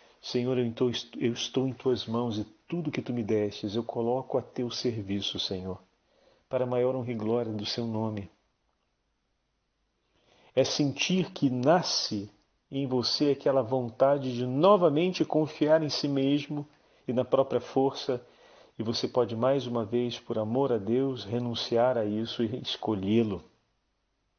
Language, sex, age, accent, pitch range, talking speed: Portuguese, male, 40-59, Brazilian, 120-140 Hz, 145 wpm